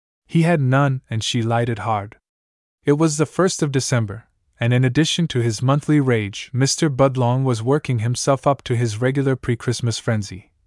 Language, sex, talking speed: English, male, 175 wpm